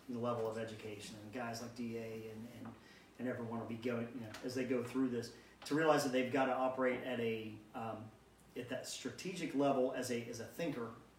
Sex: male